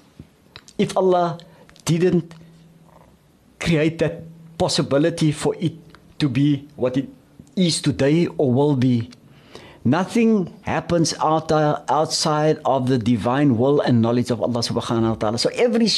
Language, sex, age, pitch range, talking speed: English, male, 60-79, 140-180 Hz, 130 wpm